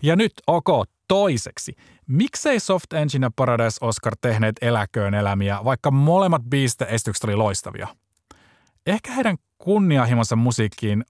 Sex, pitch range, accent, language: male, 105-140 Hz, native, Finnish